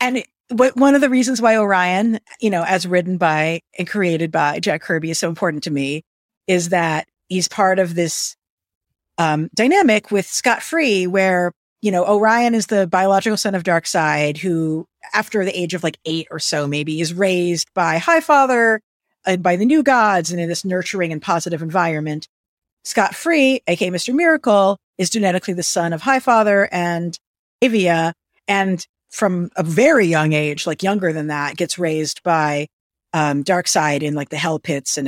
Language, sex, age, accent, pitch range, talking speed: English, female, 50-69, American, 165-250 Hz, 180 wpm